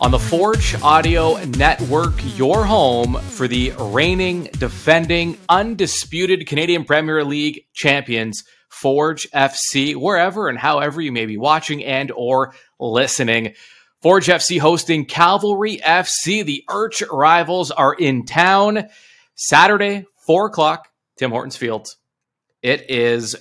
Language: English